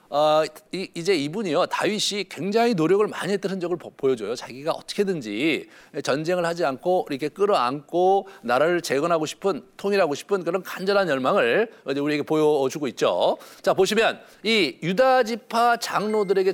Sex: male